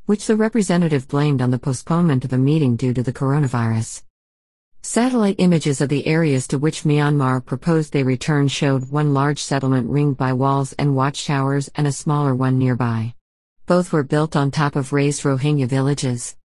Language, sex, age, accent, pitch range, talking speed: English, female, 40-59, American, 130-155 Hz, 175 wpm